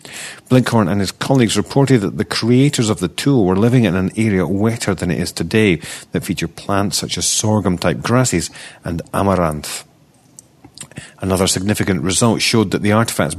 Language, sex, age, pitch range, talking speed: English, male, 40-59, 85-110 Hz, 165 wpm